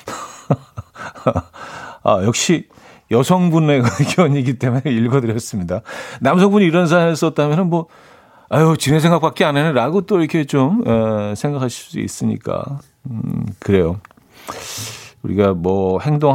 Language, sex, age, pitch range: Korean, male, 40-59, 110-145 Hz